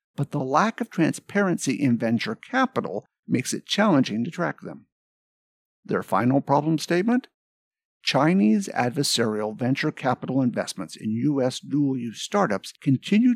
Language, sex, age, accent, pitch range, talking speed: English, male, 60-79, American, 120-190 Hz, 125 wpm